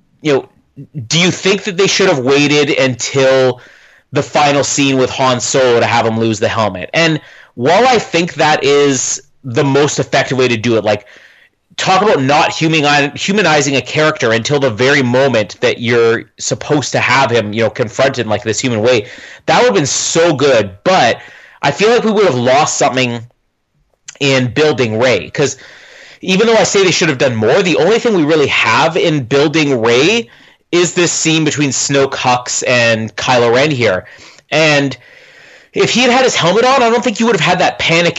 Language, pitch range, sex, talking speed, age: English, 125-170 Hz, male, 195 wpm, 30-49